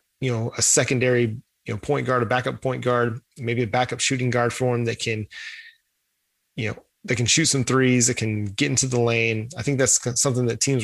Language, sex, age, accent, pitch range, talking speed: English, male, 20-39, American, 115-140 Hz, 220 wpm